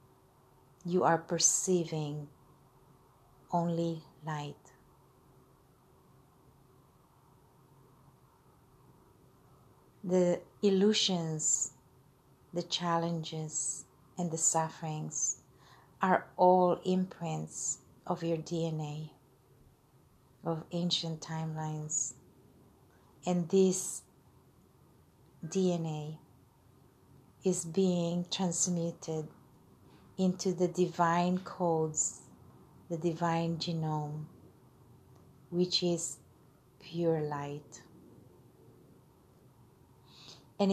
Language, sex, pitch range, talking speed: English, female, 135-175 Hz, 55 wpm